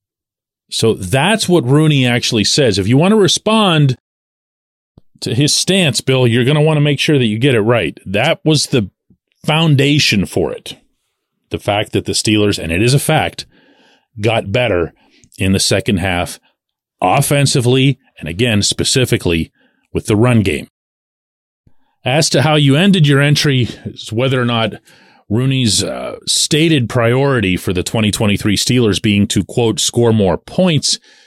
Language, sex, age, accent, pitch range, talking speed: English, male, 40-59, American, 105-140 Hz, 155 wpm